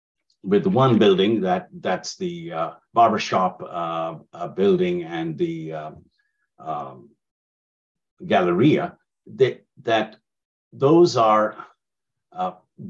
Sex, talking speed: male, 100 wpm